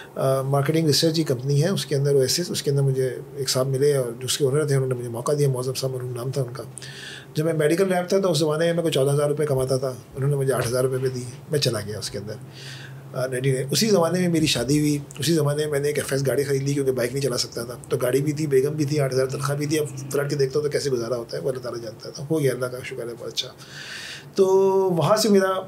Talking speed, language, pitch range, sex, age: 280 wpm, Urdu, 130-150 Hz, male, 30-49